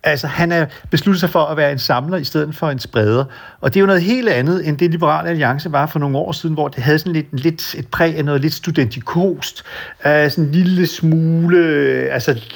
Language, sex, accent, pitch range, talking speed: Danish, male, native, 140-170 Hz, 230 wpm